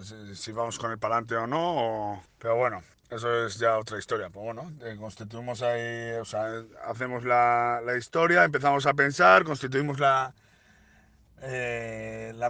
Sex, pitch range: male, 105-130 Hz